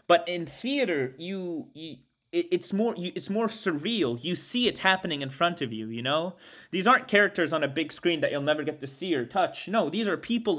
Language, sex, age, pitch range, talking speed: English, male, 30-49, 135-190 Hz, 230 wpm